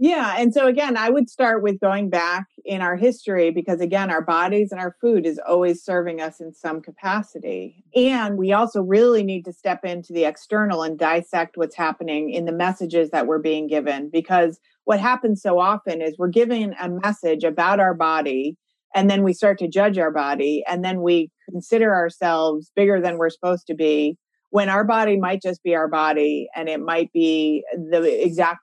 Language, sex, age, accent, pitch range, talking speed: English, female, 30-49, American, 160-200 Hz, 195 wpm